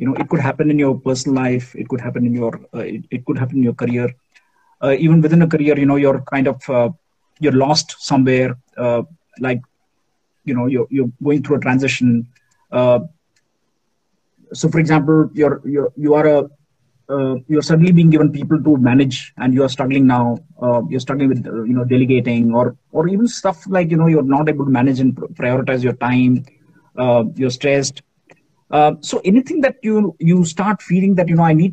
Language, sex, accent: English, male, Indian